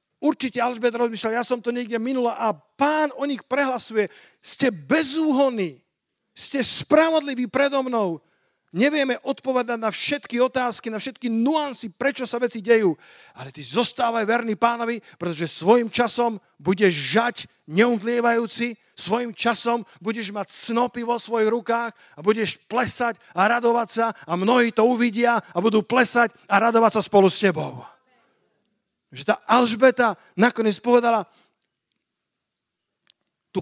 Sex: male